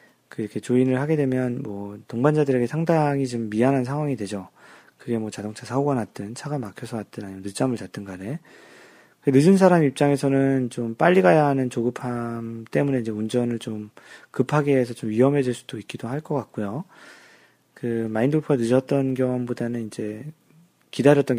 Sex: male